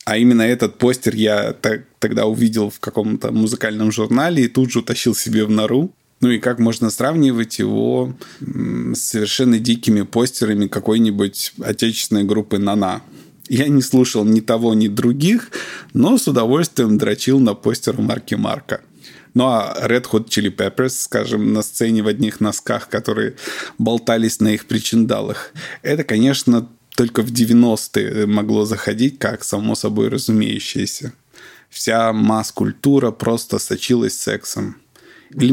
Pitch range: 110-125 Hz